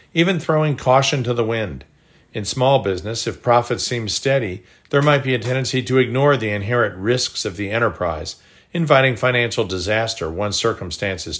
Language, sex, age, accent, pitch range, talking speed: English, male, 50-69, American, 110-130 Hz, 165 wpm